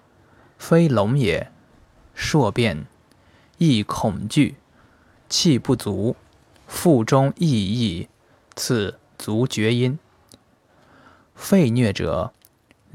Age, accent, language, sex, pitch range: 20-39, native, Chinese, male, 105-145 Hz